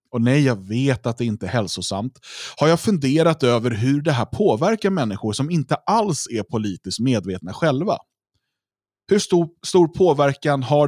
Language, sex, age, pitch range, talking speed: Swedish, male, 30-49, 110-150 Hz, 165 wpm